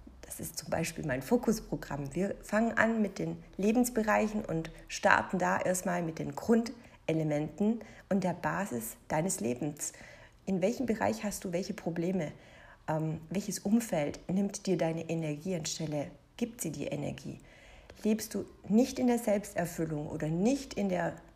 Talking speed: 150 wpm